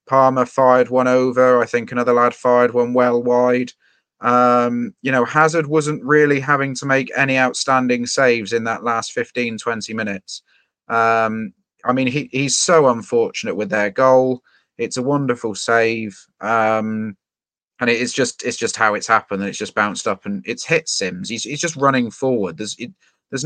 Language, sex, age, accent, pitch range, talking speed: English, male, 30-49, British, 110-130 Hz, 175 wpm